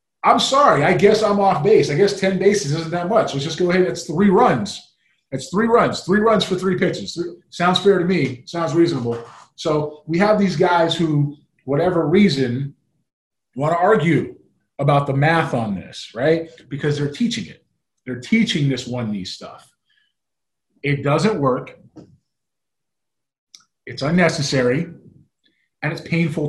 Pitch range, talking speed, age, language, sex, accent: 140-175 Hz, 165 wpm, 30-49, English, male, American